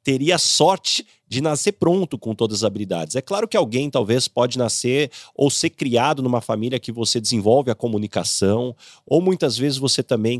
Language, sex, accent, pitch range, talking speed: Portuguese, male, Brazilian, 110-145 Hz, 180 wpm